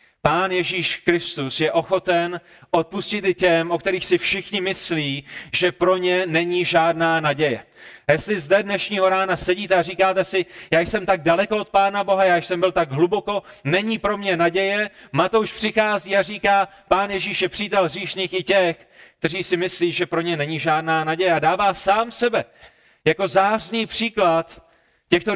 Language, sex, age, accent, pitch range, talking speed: Czech, male, 30-49, native, 170-200 Hz, 170 wpm